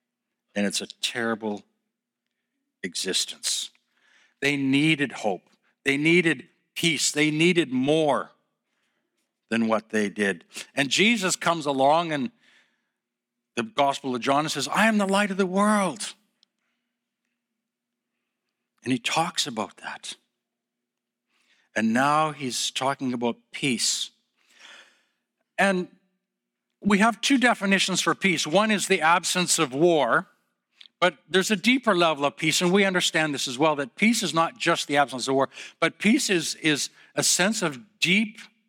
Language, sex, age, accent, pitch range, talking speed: English, male, 60-79, American, 135-190 Hz, 140 wpm